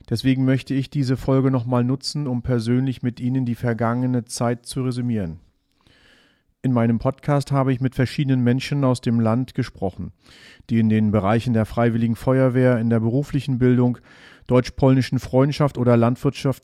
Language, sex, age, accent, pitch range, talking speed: German, male, 40-59, German, 110-130 Hz, 155 wpm